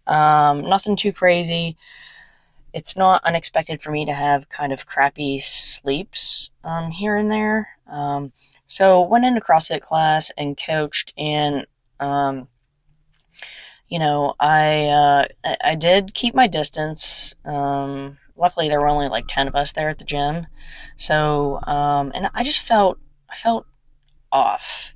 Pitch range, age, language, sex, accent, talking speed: 145-175 Hz, 20-39, English, female, American, 145 wpm